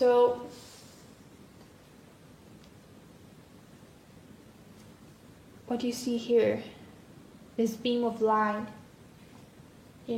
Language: English